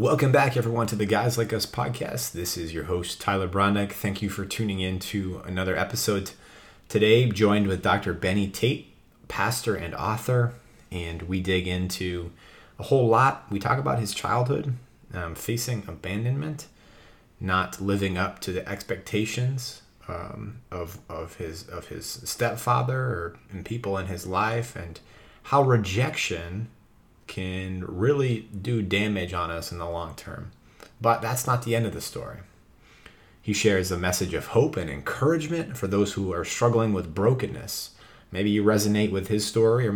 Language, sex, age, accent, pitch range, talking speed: English, male, 30-49, American, 95-120 Hz, 165 wpm